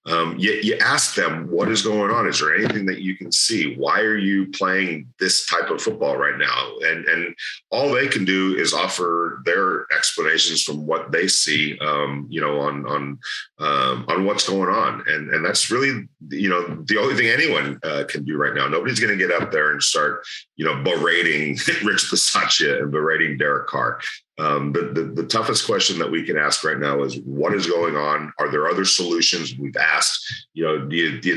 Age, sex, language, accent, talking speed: 40-59, male, English, American, 215 wpm